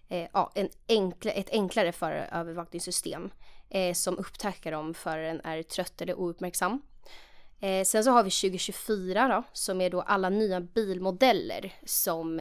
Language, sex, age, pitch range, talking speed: Swedish, female, 20-39, 175-215 Hz, 110 wpm